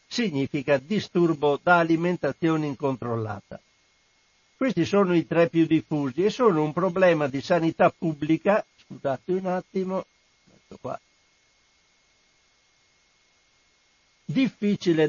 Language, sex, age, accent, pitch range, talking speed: Italian, male, 60-79, native, 155-190 Hz, 90 wpm